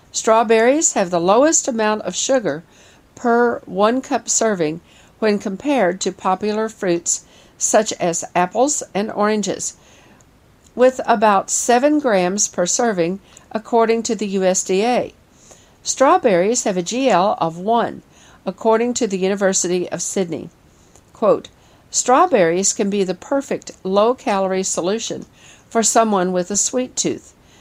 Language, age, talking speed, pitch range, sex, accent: English, 50-69, 125 wpm, 185-235 Hz, female, American